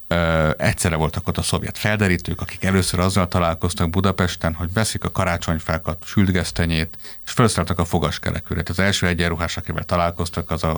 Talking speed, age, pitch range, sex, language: 155 wpm, 50-69, 85-110 Hz, male, Hungarian